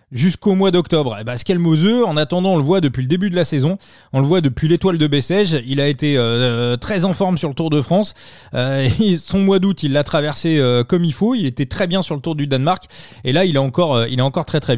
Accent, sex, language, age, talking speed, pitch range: French, male, French, 30-49, 275 wpm, 140-185 Hz